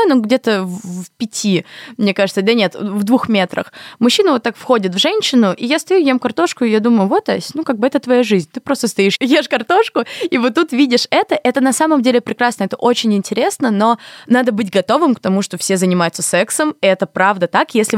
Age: 20-39